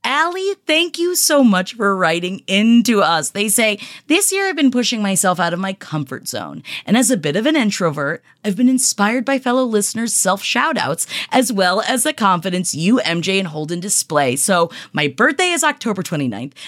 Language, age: English, 30-49